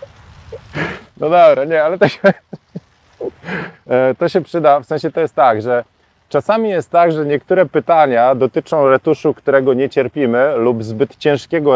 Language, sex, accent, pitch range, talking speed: Polish, male, native, 125-165 Hz, 145 wpm